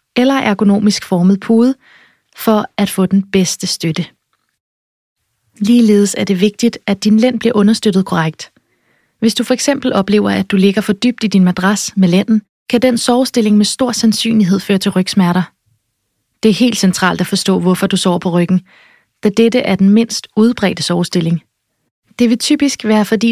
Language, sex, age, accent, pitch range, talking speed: Danish, female, 30-49, native, 185-225 Hz, 170 wpm